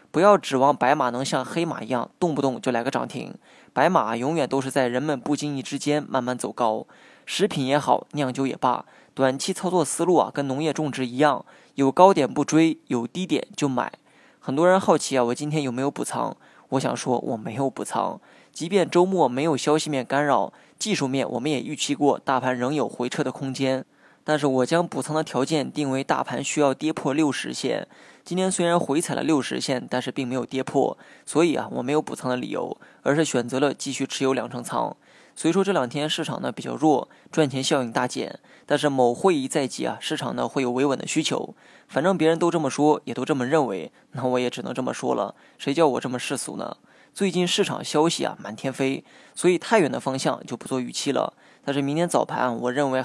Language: Chinese